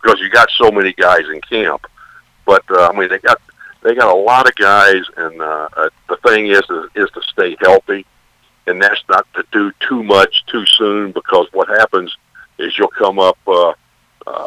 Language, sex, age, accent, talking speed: English, male, 60-79, American, 195 wpm